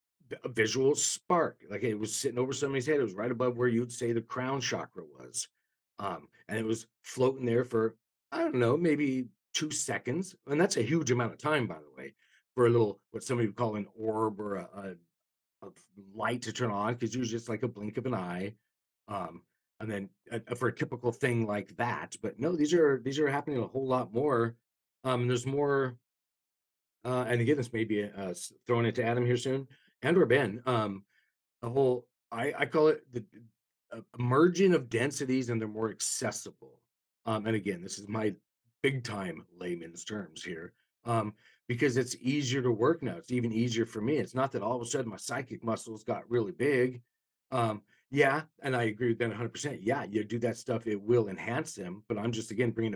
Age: 40-59